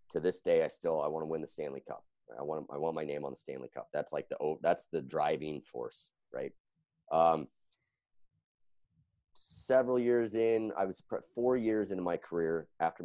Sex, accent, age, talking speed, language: male, American, 30-49, 200 wpm, English